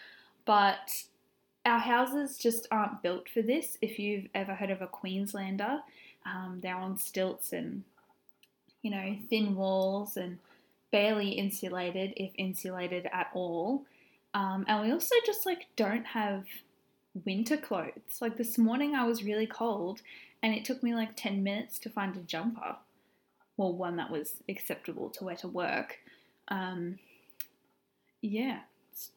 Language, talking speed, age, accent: English, 145 wpm, 10-29, Australian